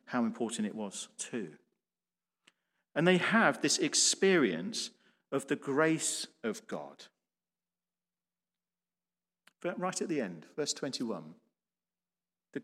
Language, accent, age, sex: English, British, 50-69, male